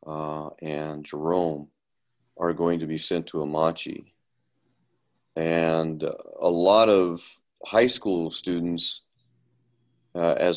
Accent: American